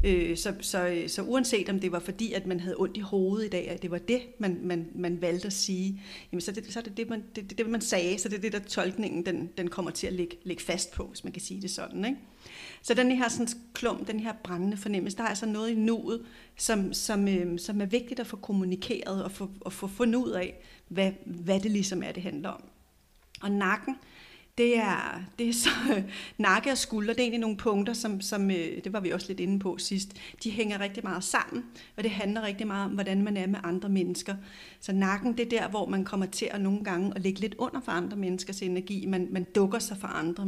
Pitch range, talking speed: 185-225 Hz, 250 wpm